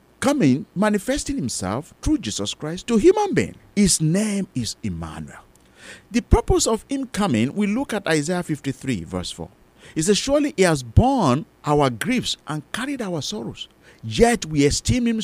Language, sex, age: English, male, 50-69